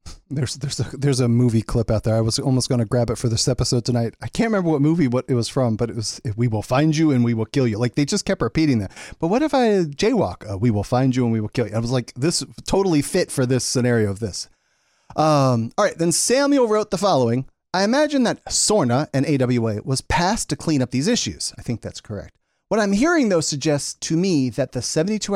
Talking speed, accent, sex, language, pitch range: 255 wpm, American, male, English, 125-205 Hz